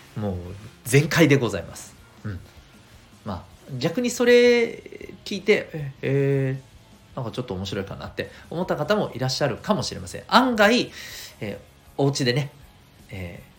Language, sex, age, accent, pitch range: Japanese, male, 40-59, native, 100-140 Hz